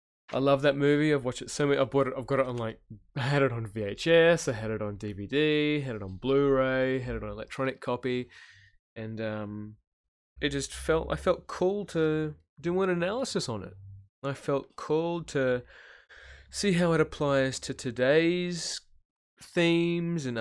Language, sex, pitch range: English, male, 110-150 Hz